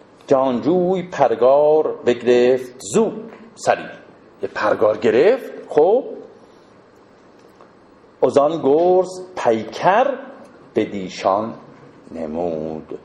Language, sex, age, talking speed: Persian, male, 50-69, 65 wpm